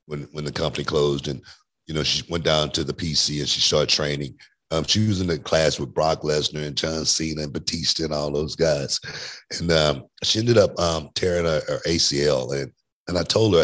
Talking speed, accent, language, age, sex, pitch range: 225 wpm, American, English, 50-69, male, 75-100 Hz